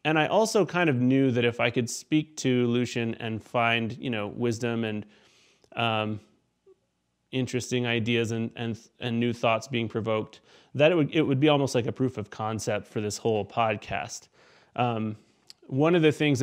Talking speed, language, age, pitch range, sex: 170 wpm, English, 30-49, 115-140 Hz, male